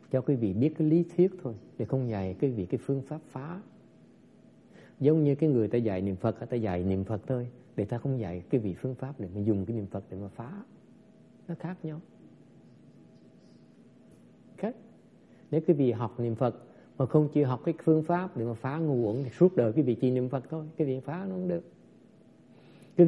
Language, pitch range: English, 120-170 Hz